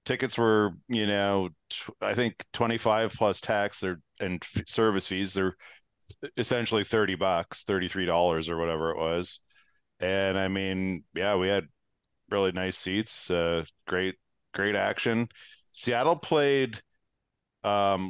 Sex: male